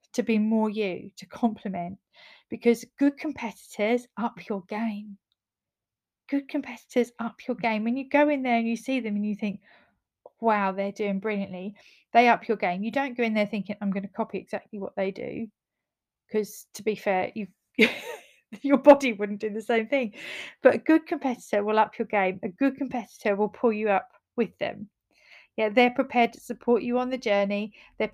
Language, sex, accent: English, female, British